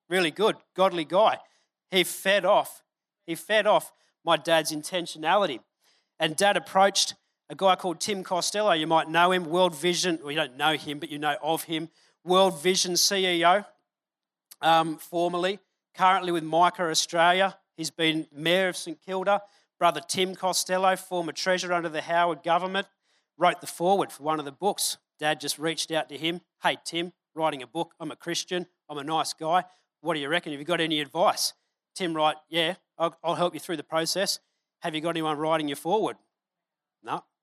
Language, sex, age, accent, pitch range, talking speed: English, male, 40-59, Australian, 155-180 Hz, 185 wpm